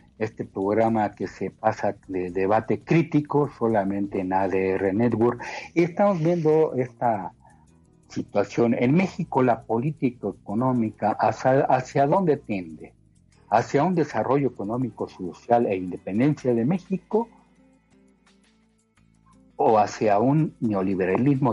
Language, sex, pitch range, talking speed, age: Spanish, male, 100-140 Hz, 105 wpm, 60-79